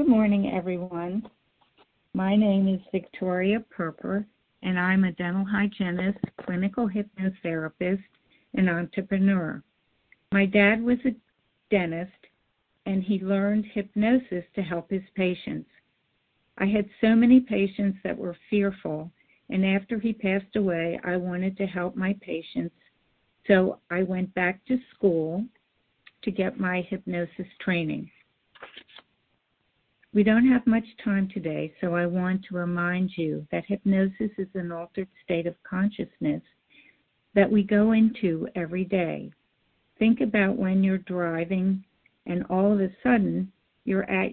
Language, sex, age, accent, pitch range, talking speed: English, female, 50-69, American, 180-205 Hz, 135 wpm